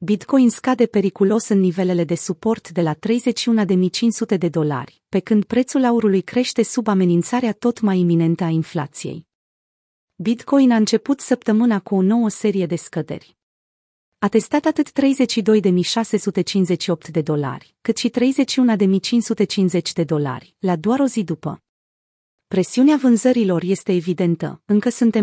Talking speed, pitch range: 145 wpm, 170-230 Hz